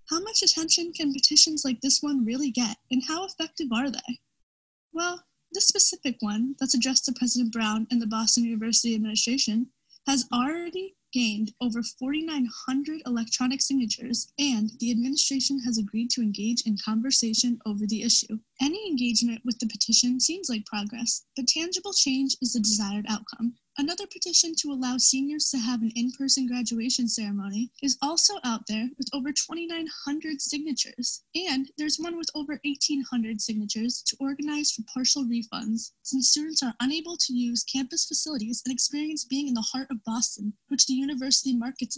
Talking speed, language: 165 wpm, English